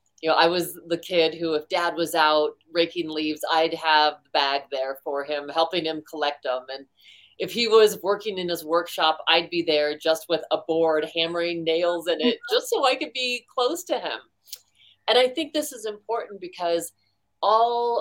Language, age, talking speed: English, 30-49, 195 wpm